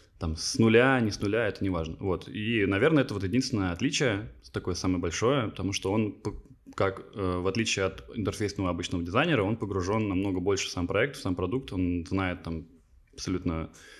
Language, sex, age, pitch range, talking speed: Russian, male, 20-39, 90-105 Hz, 185 wpm